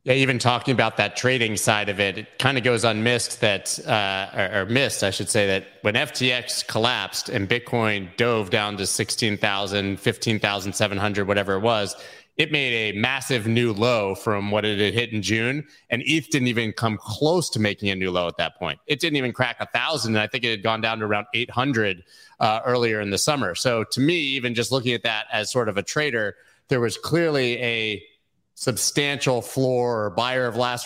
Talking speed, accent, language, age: 205 wpm, American, English, 30-49